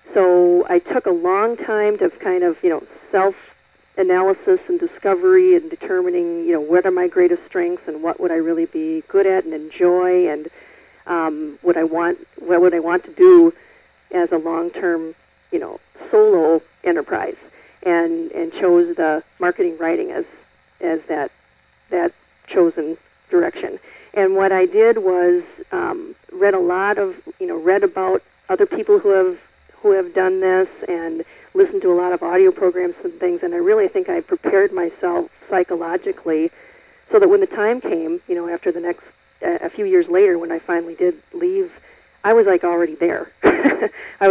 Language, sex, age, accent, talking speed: English, female, 40-59, American, 180 wpm